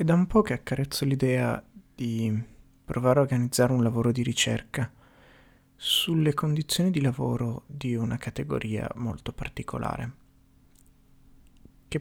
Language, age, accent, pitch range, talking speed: Italian, 30-49, native, 120-140 Hz, 125 wpm